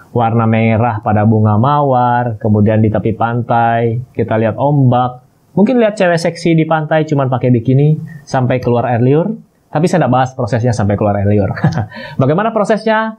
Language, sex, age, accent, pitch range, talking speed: Indonesian, male, 20-39, native, 115-150 Hz, 170 wpm